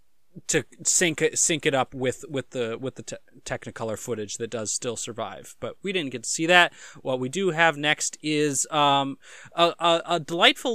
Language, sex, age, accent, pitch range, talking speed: English, male, 20-39, American, 140-185 Hz, 195 wpm